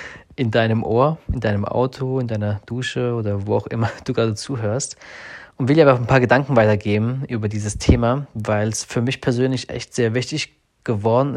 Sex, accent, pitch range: male, German, 110-125 Hz